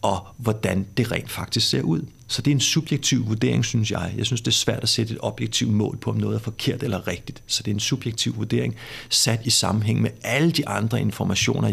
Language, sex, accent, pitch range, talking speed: Danish, male, native, 105-130 Hz, 235 wpm